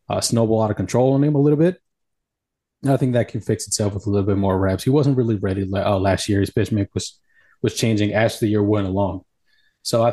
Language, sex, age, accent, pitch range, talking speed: English, male, 20-39, American, 100-125 Hz, 255 wpm